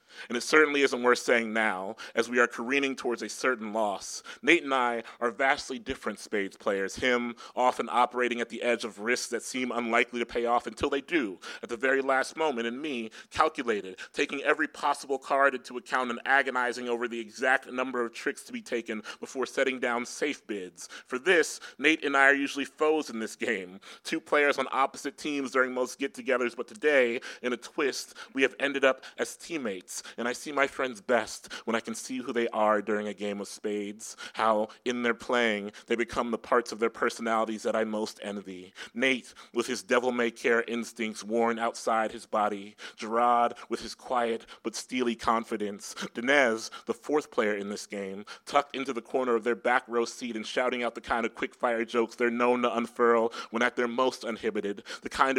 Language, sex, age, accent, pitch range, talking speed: English, male, 30-49, American, 115-130 Hz, 200 wpm